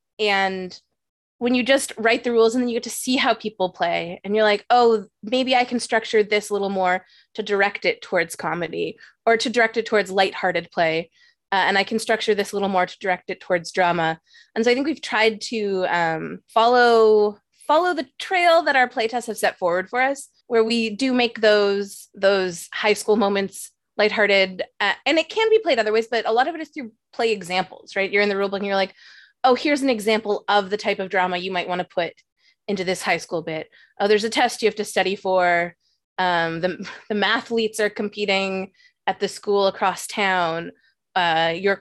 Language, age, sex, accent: English, 20-39, female, American